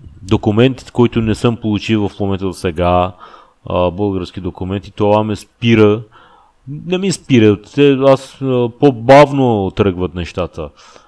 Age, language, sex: 30-49, Bulgarian, male